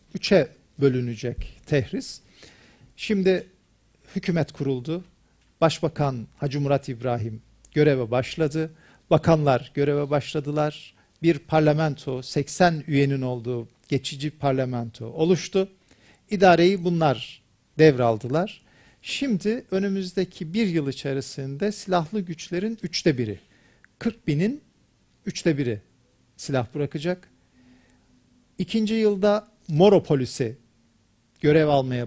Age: 50-69